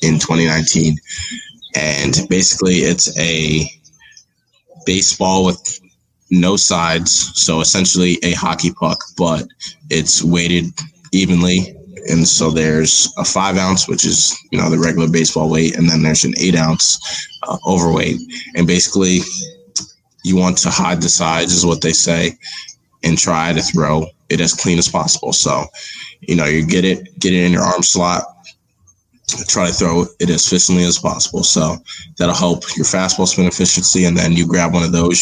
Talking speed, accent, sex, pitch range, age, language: 165 wpm, American, male, 80-95 Hz, 20-39, English